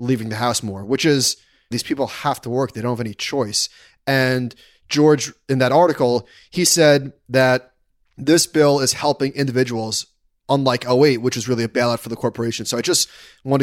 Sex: male